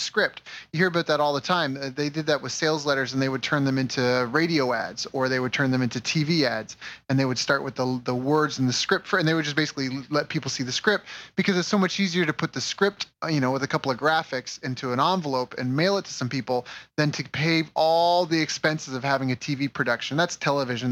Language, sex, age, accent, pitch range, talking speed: English, male, 30-49, American, 130-155 Hz, 255 wpm